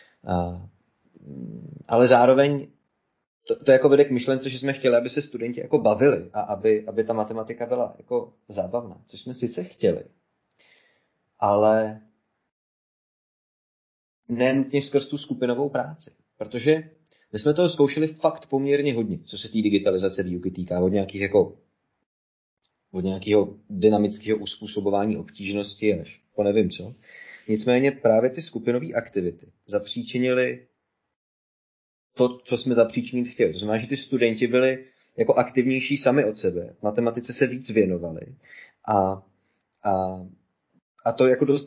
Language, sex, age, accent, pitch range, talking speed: Czech, male, 30-49, native, 100-130 Hz, 135 wpm